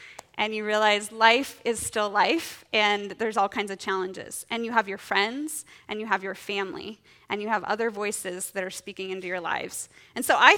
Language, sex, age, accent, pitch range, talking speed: English, female, 20-39, American, 205-275 Hz, 210 wpm